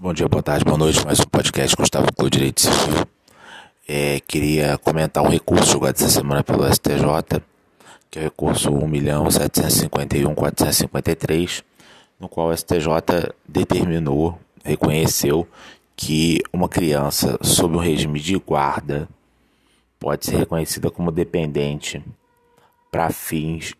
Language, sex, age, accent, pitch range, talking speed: Portuguese, male, 20-39, Brazilian, 75-80 Hz, 125 wpm